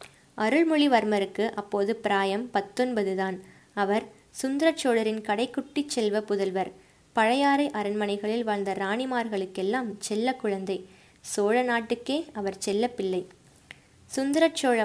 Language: Tamil